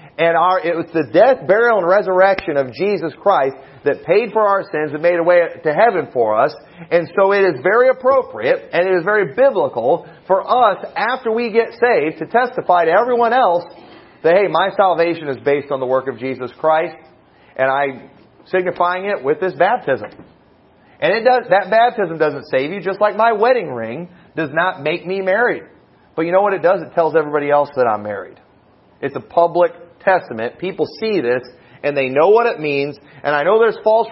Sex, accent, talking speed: male, American, 200 wpm